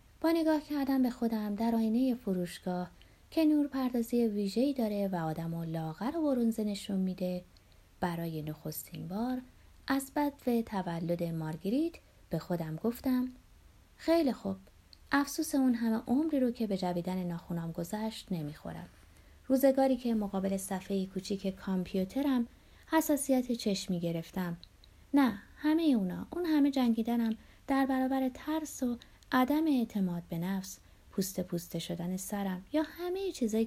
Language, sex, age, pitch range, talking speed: Persian, female, 30-49, 180-260 Hz, 130 wpm